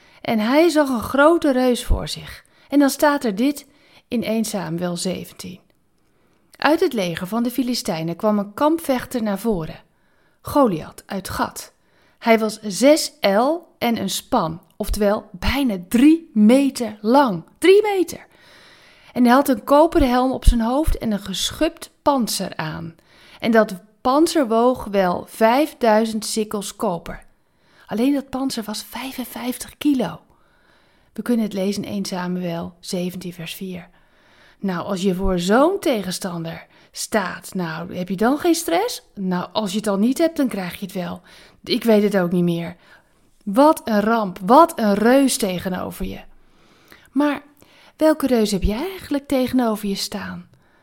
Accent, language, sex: Dutch, Dutch, female